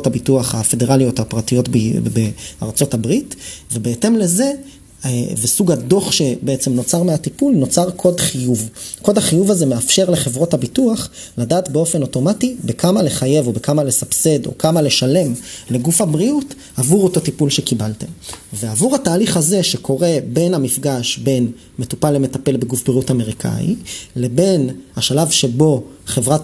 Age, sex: 30-49, male